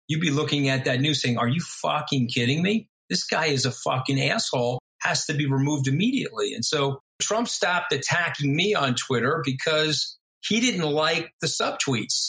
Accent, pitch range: American, 125-155 Hz